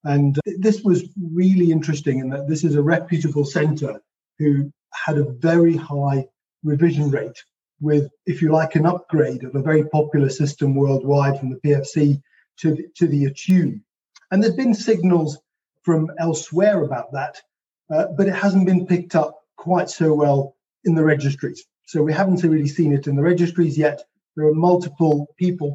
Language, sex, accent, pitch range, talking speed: English, male, British, 150-180 Hz, 170 wpm